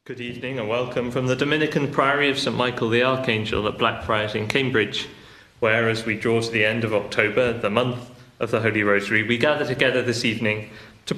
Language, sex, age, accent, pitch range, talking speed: English, male, 30-49, British, 110-135 Hz, 205 wpm